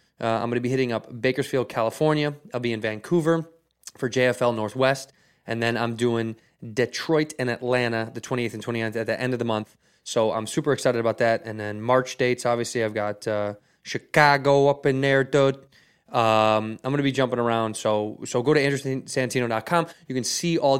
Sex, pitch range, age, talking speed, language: male, 115-140 Hz, 20-39, 195 wpm, English